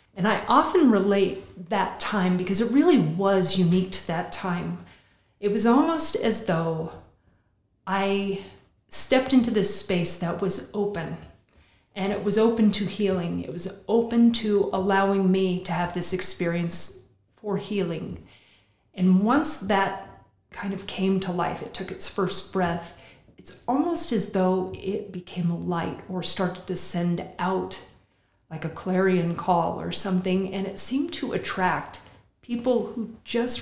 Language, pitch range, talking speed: English, 185-215 Hz, 150 wpm